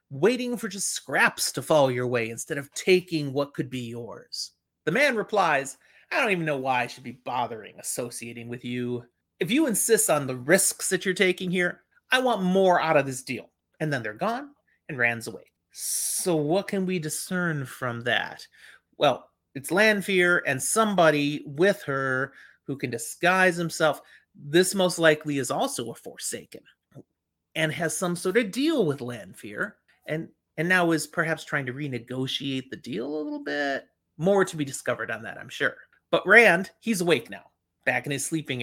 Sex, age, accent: male, 30-49, American